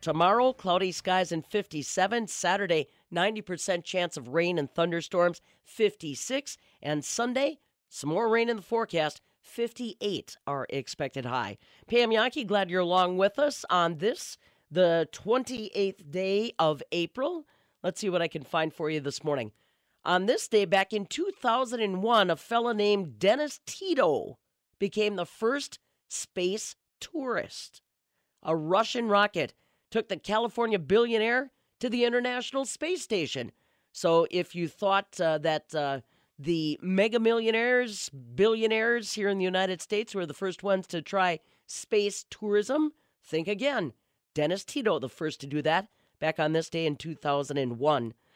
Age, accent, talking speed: 40-59, American, 145 wpm